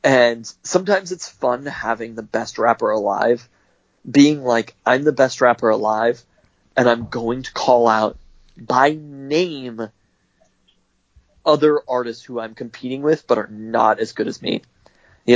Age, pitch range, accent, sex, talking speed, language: 20-39, 115-150 Hz, American, male, 150 wpm, English